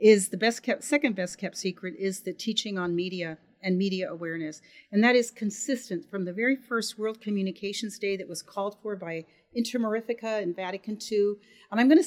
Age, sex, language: 40-59, female, English